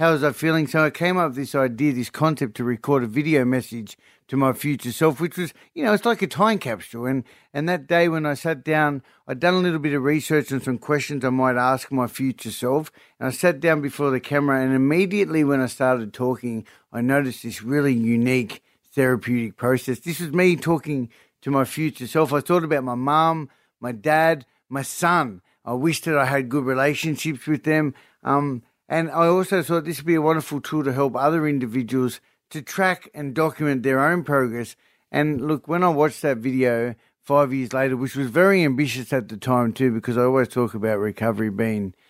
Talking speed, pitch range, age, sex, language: 210 wpm, 125-155 Hz, 60-79, male, English